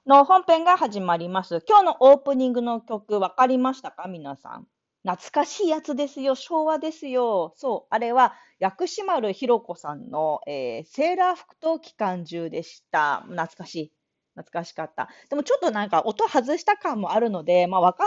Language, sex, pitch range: Japanese, female, 190-295 Hz